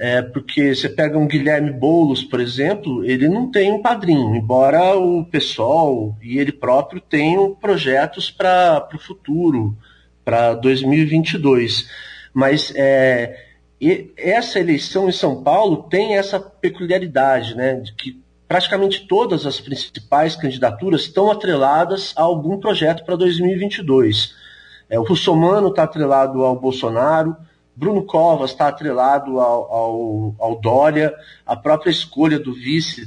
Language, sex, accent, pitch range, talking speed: Portuguese, male, Brazilian, 120-165 Hz, 135 wpm